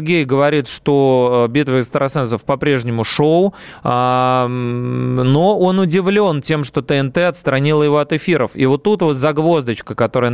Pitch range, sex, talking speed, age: 125-155 Hz, male, 135 wpm, 20-39